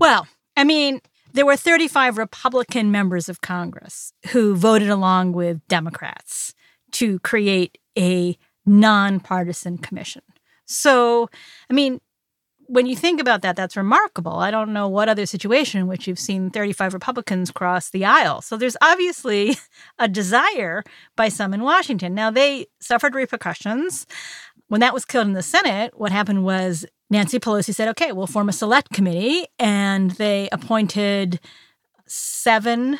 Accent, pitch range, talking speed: American, 190-245 Hz, 145 wpm